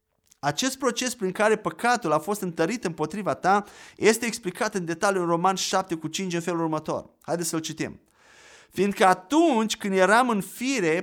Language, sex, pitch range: Romanian, male, 175-230 Hz